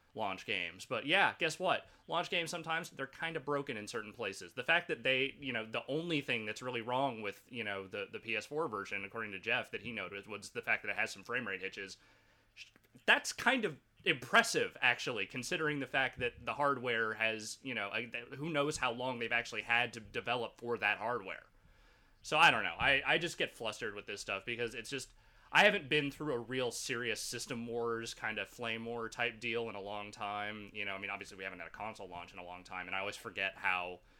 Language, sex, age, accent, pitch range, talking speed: English, male, 30-49, American, 105-140 Hz, 230 wpm